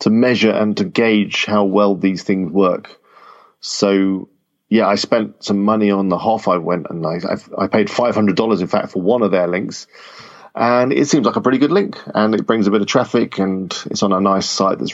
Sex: male